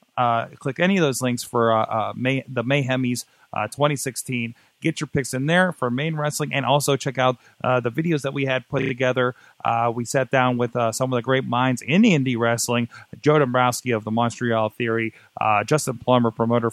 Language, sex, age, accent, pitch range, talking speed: English, male, 30-49, American, 115-145 Hz, 210 wpm